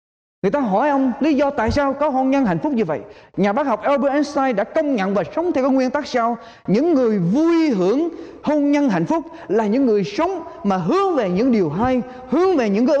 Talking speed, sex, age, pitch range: 235 wpm, male, 20-39, 195-305 Hz